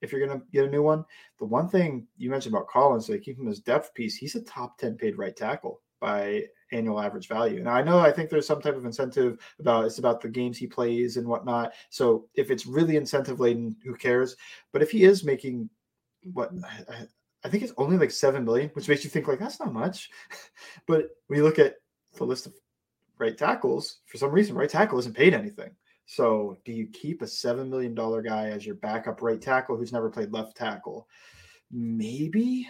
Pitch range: 120-190 Hz